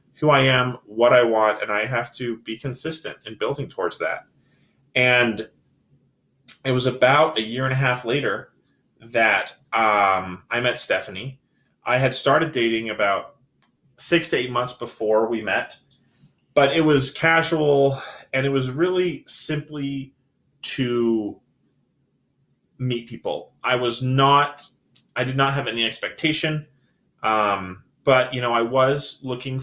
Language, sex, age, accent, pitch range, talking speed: English, male, 30-49, American, 110-135 Hz, 140 wpm